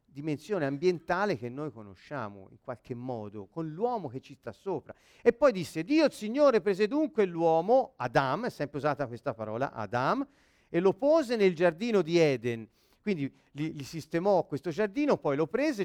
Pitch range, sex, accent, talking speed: 145-215 Hz, male, native, 175 wpm